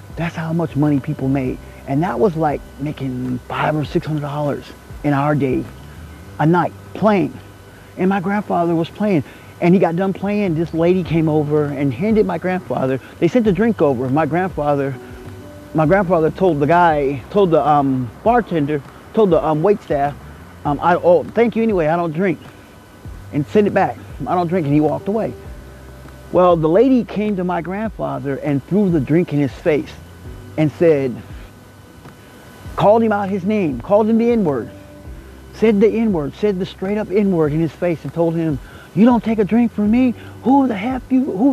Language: English